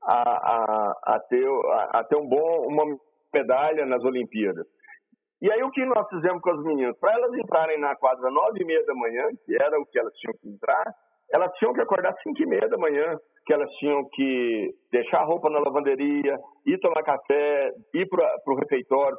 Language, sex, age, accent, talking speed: Portuguese, male, 60-79, Brazilian, 190 wpm